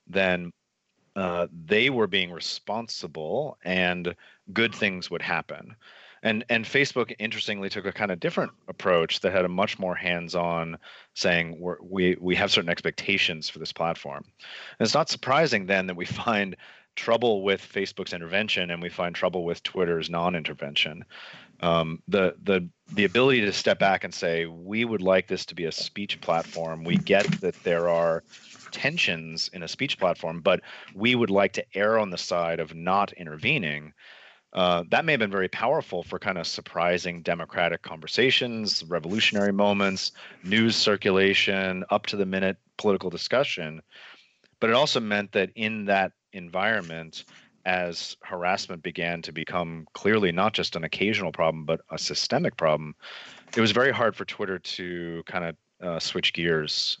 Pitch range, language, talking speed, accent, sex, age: 85-100 Hz, English, 165 wpm, American, male, 30-49